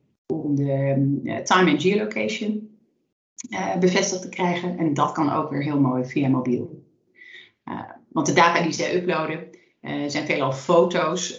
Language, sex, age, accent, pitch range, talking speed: Dutch, female, 30-49, Dutch, 145-185 Hz, 155 wpm